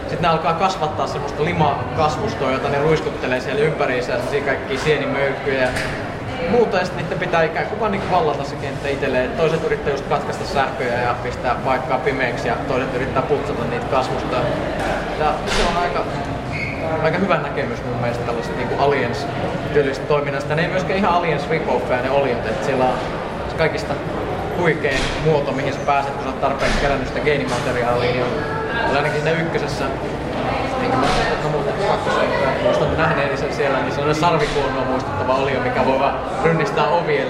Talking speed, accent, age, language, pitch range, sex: 170 wpm, native, 20-39, Finnish, 130-155 Hz, male